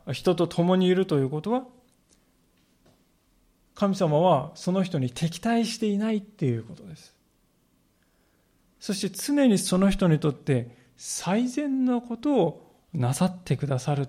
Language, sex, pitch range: Japanese, male, 140-210 Hz